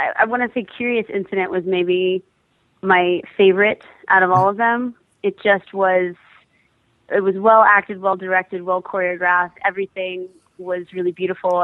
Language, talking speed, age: English, 155 wpm, 20-39